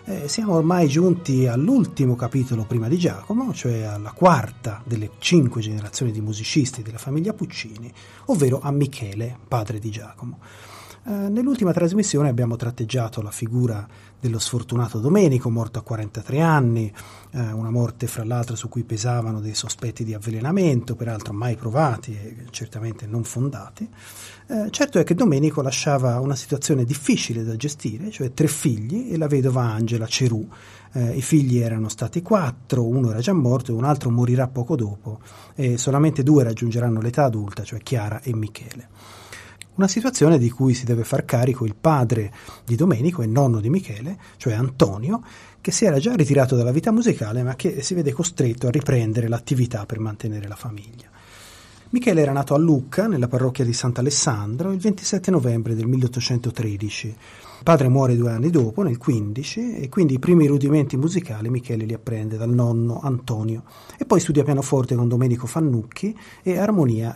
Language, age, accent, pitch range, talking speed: Italian, 30-49, native, 115-150 Hz, 165 wpm